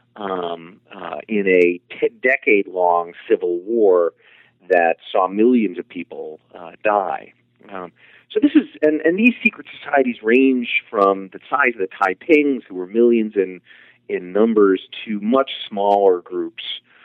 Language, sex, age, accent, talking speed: English, male, 40-59, American, 150 wpm